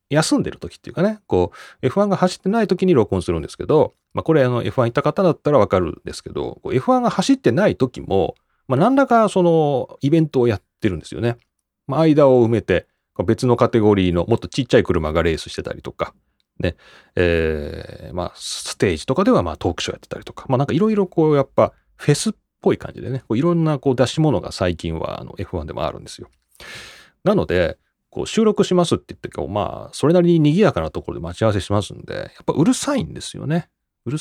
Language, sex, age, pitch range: Japanese, male, 30-49, 115-180 Hz